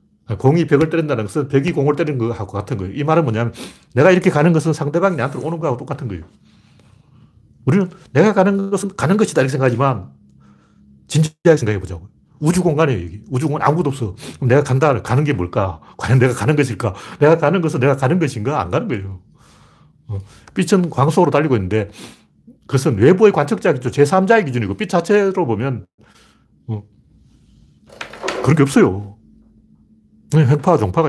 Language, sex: Korean, male